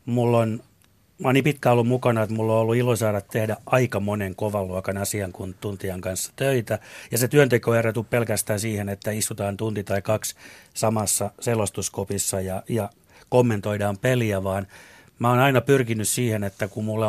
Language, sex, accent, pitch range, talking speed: Finnish, male, native, 100-125 Hz, 170 wpm